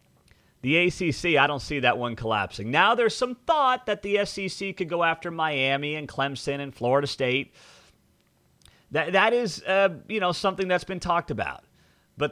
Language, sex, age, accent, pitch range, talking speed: English, male, 30-49, American, 130-180 Hz, 175 wpm